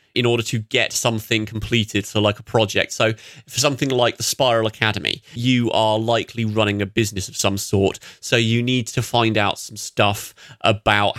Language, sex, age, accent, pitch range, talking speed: English, male, 30-49, British, 105-120 Hz, 190 wpm